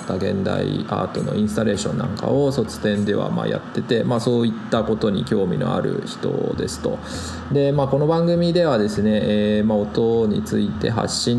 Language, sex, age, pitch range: Japanese, male, 20-39, 105-135 Hz